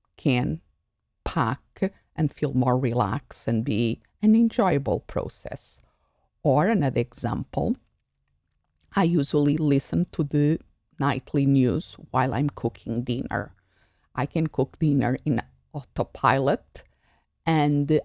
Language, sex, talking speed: English, female, 105 wpm